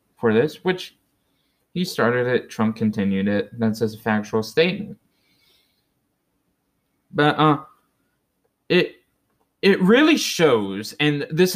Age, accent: 20-39, American